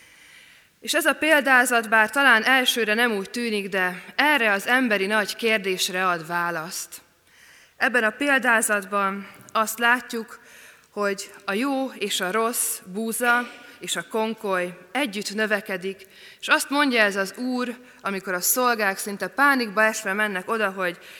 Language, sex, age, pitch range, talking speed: Hungarian, female, 20-39, 180-235 Hz, 140 wpm